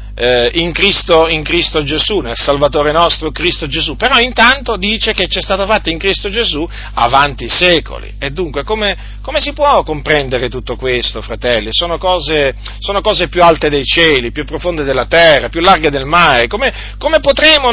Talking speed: 175 wpm